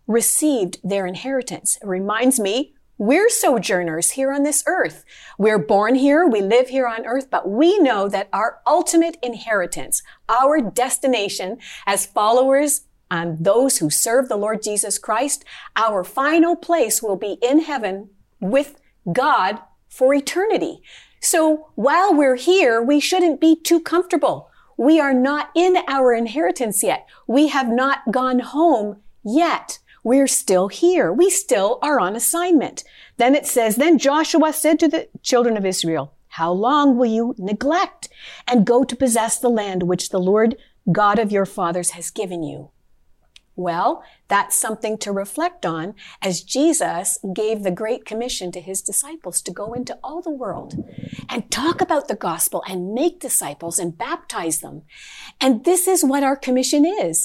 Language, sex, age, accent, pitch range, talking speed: English, female, 50-69, American, 200-295 Hz, 160 wpm